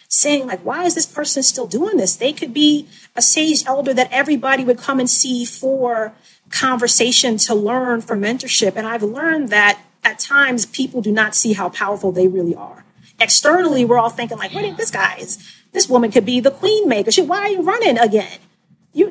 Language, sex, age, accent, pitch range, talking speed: English, female, 40-59, American, 210-290 Hz, 205 wpm